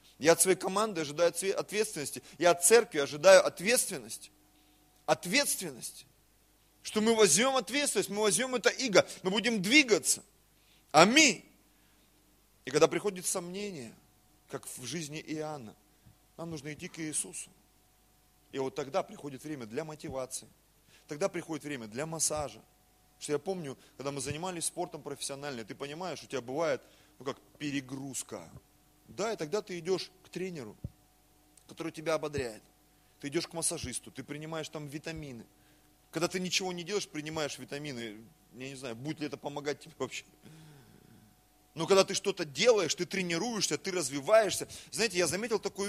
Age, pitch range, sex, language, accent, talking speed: 30-49, 145-195 Hz, male, Russian, native, 150 wpm